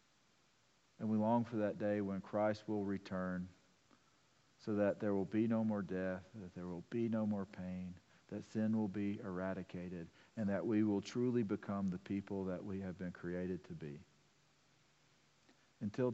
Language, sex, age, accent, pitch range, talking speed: English, male, 50-69, American, 95-115 Hz, 170 wpm